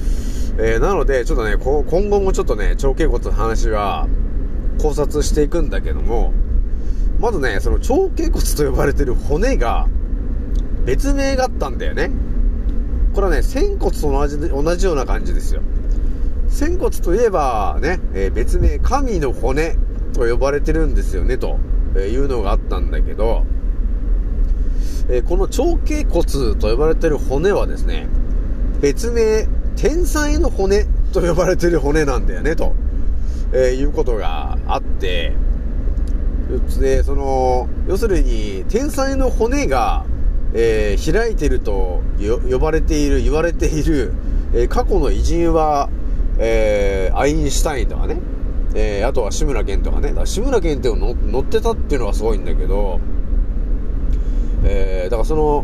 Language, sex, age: Japanese, male, 40-59